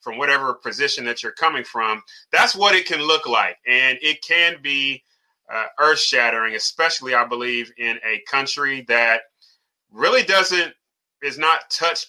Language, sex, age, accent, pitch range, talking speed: English, male, 30-49, American, 115-150 Hz, 160 wpm